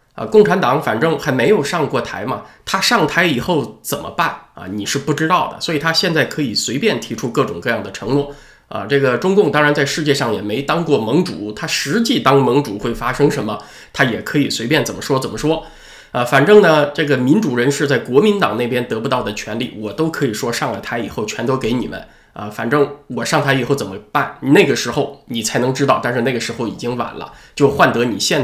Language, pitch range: Chinese, 125-165 Hz